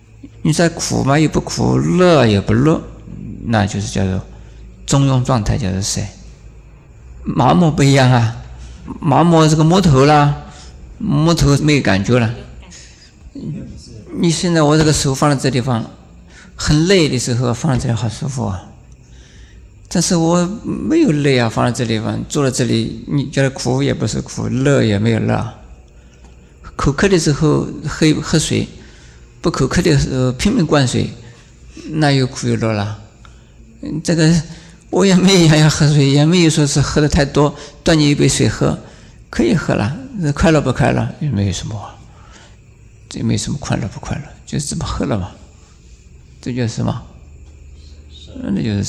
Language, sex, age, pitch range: Chinese, male, 50-69, 95-150 Hz